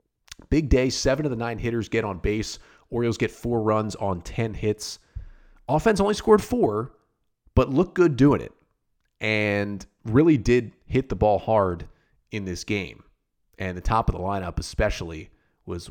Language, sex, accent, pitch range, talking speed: English, male, American, 105-135 Hz, 165 wpm